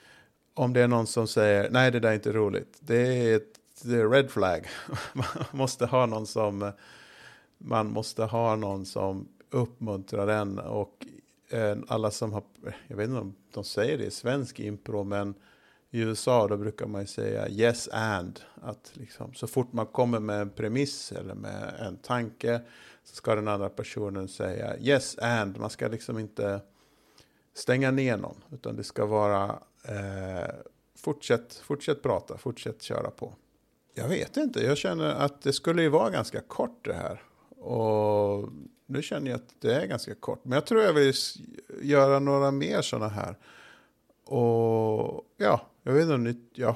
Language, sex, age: Swedish, male, 50-69